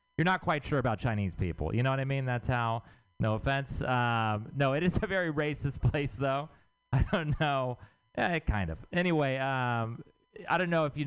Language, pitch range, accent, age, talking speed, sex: English, 105-150 Hz, American, 30-49, 210 wpm, male